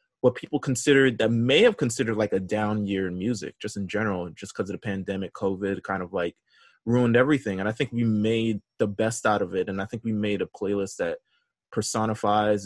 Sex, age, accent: male, 20-39, American